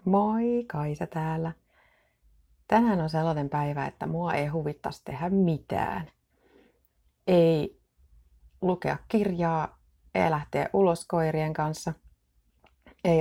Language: Finnish